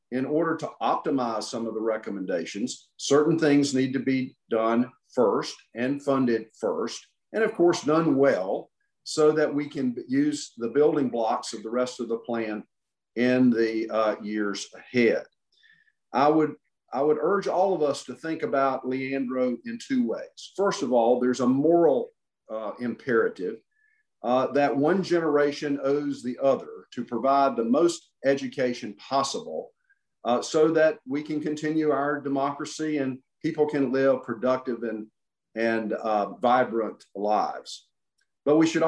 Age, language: 50-69, English